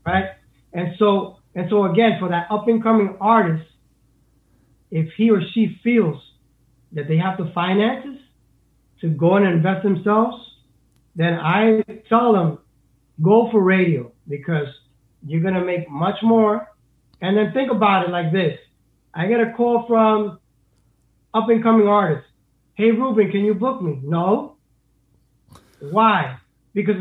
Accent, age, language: American, 30-49, English